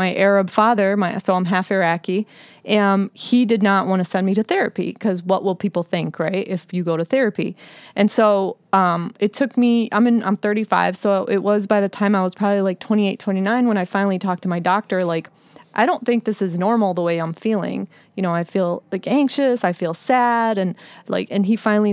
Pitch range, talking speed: 185-225 Hz, 225 wpm